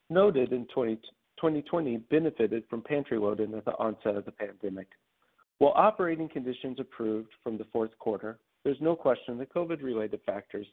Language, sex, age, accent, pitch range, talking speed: English, male, 50-69, American, 110-150 Hz, 150 wpm